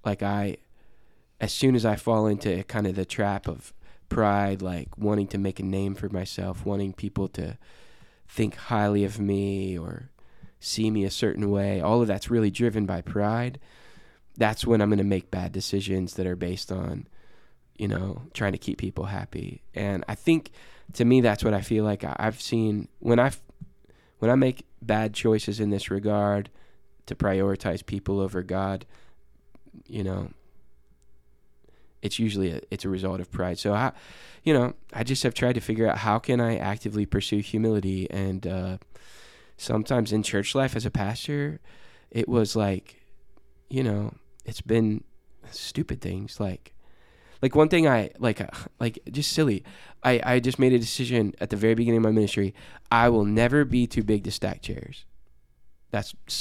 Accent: American